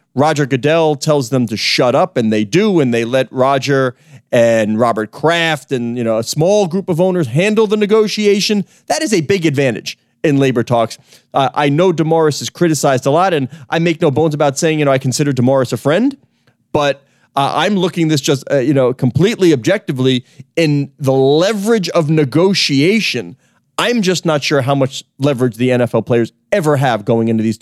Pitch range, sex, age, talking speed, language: 130-180 Hz, male, 30-49, 195 wpm, English